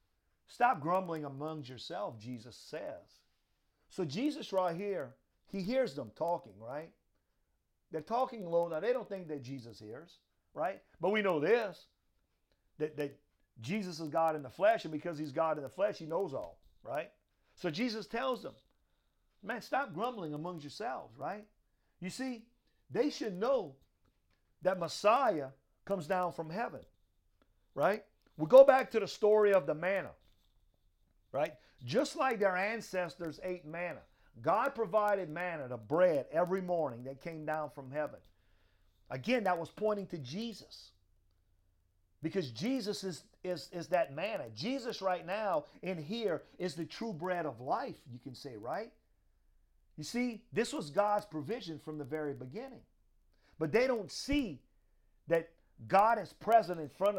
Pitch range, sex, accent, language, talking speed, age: 145-205 Hz, male, American, English, 155 wpm, 50-69